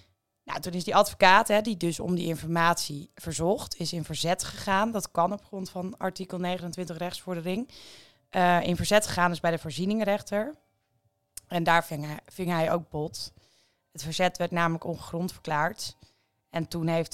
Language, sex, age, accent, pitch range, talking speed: English, female, 20-39, Dutch, 155-180 Hz, 170 wpm